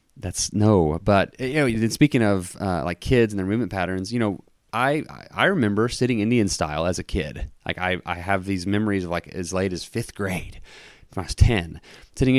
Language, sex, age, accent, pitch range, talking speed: English, male, 30-49, American, 90-115 Hz, 215 wpm